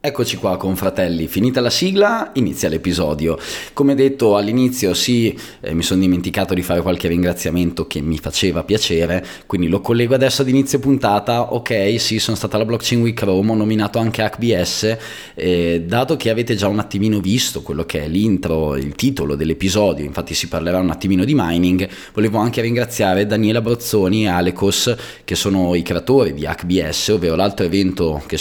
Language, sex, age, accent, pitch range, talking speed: Italian, male, 20-39, native, 90-110 Hz, 175 wpm